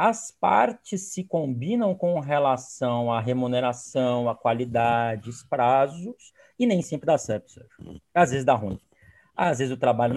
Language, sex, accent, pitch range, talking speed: Portuguese, male, Brazilian, 130-180 Hz, 150 wpm